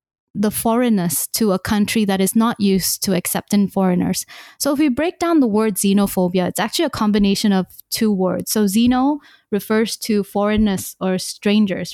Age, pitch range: 20-39, 190-230 Hz